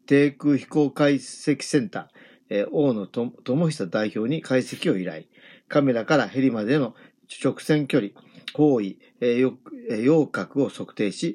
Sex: male